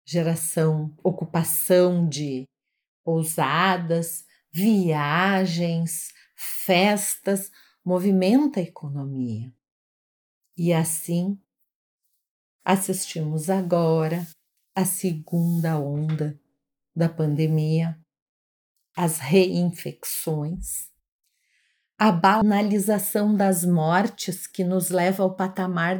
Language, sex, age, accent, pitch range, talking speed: Portuguese, female, 40-59, Brazilian, 170-215 Hz, 65 wpm